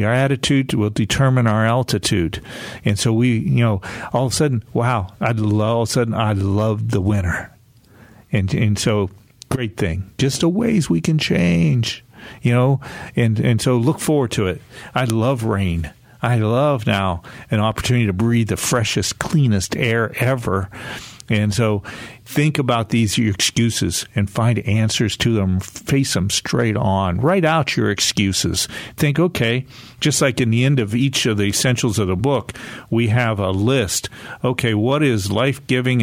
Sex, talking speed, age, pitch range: male, 170 wpm, 50-69, 105-125 Hz